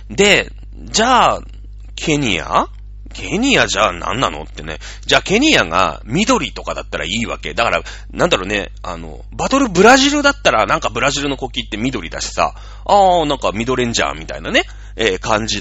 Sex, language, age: male, Japanese, 30-49